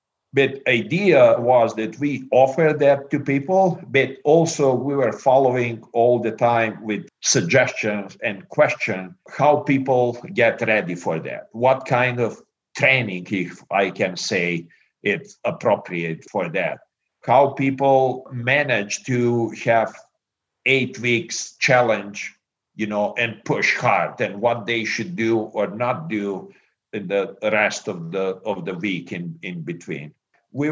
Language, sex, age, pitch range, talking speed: English, male, 50-69, 110-140 Hz, 140 wpm